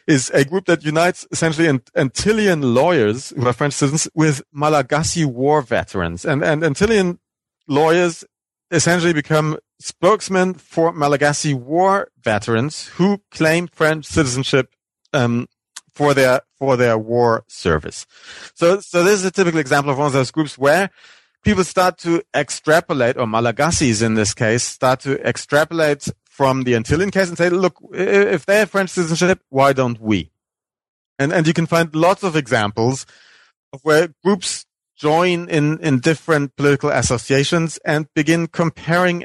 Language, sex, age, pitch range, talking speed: English, male, 40-59, 130-165 Hz, 150 wpm